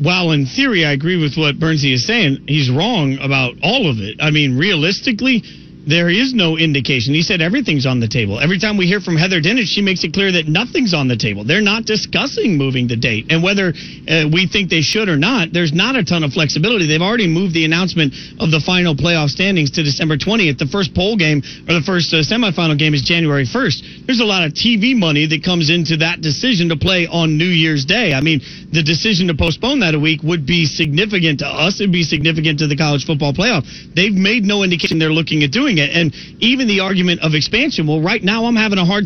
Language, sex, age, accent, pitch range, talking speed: English, male, 40-59, American, 155-200 Hz, 235 wpm